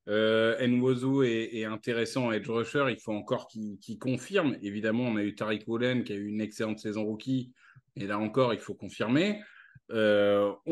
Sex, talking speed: male, 185 wpm